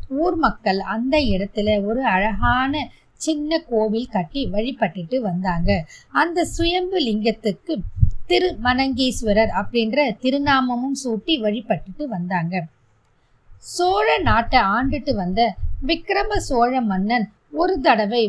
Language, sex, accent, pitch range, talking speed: Tamil, female, native, 200-275 Hz, 80 wpm